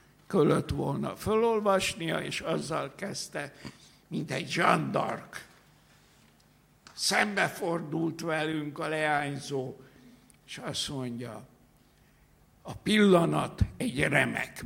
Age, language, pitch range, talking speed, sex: 60-79, Hungarian, 120-185 Hz, 80 wpm, male